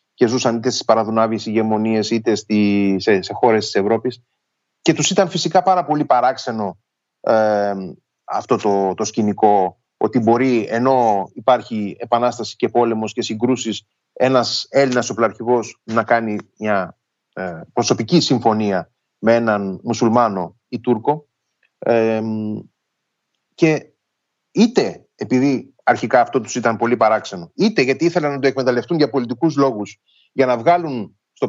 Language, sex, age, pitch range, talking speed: Greek, male, 30-49, 110-135 Hz, 130 wpm